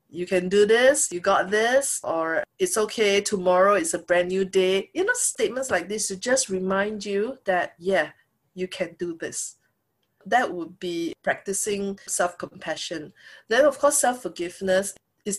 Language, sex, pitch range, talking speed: English, female, 170-210 Hz, 160 wpm